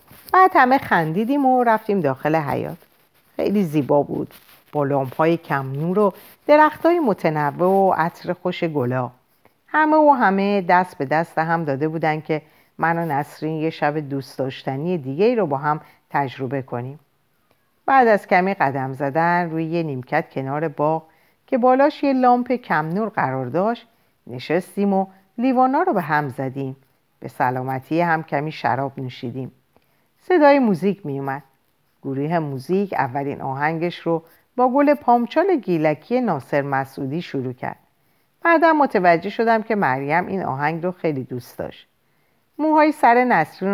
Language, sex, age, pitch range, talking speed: Persian, female, 50-69, 145-215 Hz, 145 wpm